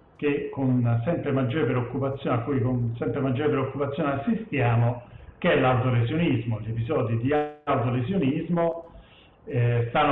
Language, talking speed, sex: Italian, 125 wpm, male